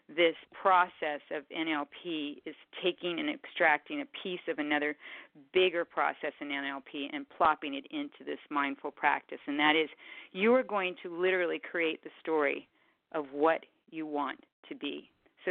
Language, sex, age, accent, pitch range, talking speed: English, female, 40-59, American, 155-245 Hz, 160 wpm